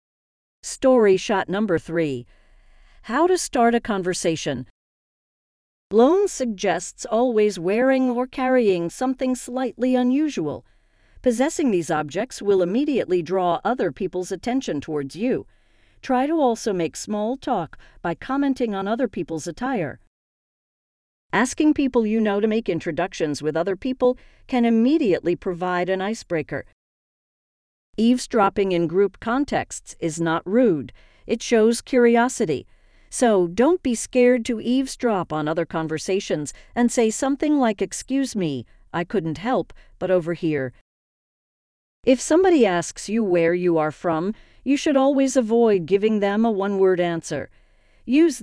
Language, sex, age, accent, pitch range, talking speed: English, female, 50-69, American, 170-250 Hz, 130 wpm